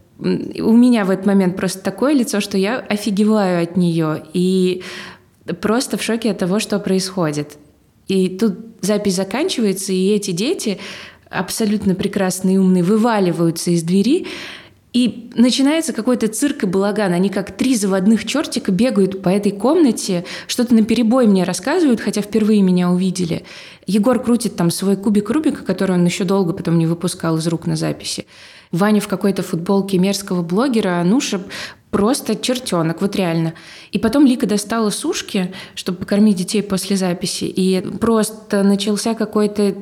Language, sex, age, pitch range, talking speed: Russian, female, 20-39, 180-220 Hz, 150 wpm